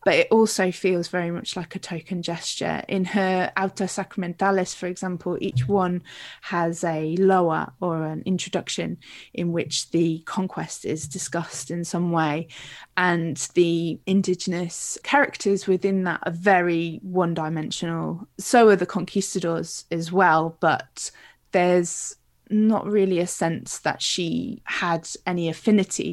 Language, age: English, 20-39